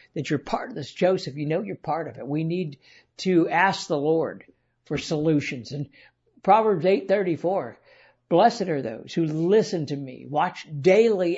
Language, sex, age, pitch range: English, male, 60-79, 155-190 Hz